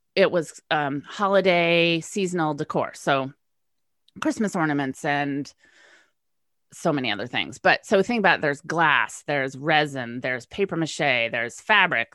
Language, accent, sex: English, American, female